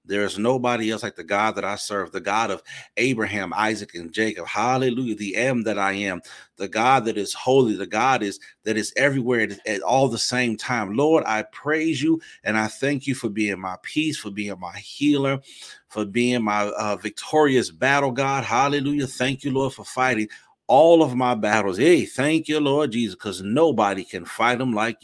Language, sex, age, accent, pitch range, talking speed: English, male, 40-59, American, 110-140 Hz, 200 wpm